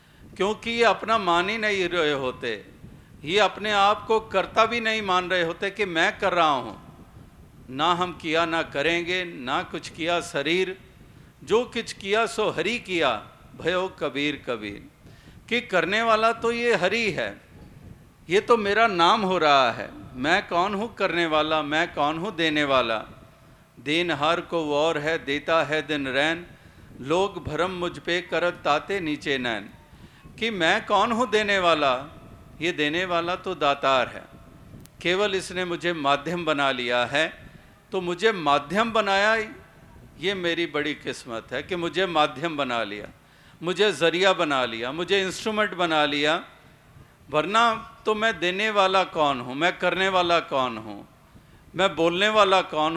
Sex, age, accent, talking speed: male, 50-69, native, 155 wpm